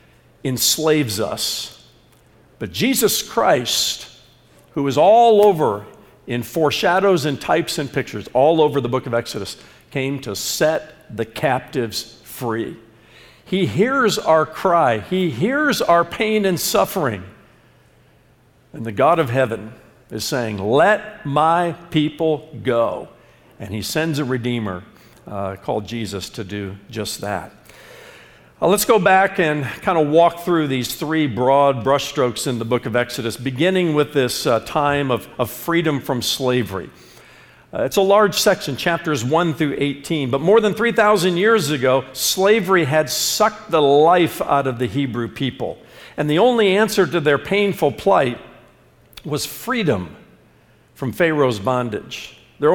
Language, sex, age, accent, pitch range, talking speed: English, male, 50-69, American, 125-175 Hz, 145 wpm